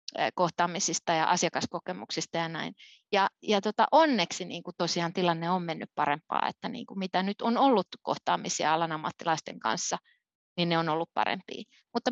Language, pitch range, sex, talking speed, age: Finnish, 175-260 Hz, female, 155 wpm, 30-49